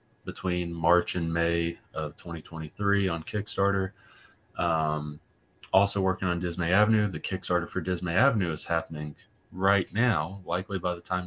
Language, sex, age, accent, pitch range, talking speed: English, male, 30-49, American, 85-100 Hz, 145 wpm